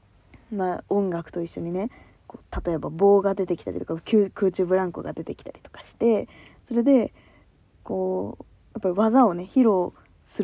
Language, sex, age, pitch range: Japanese, female, 20-39, 185-280 Hz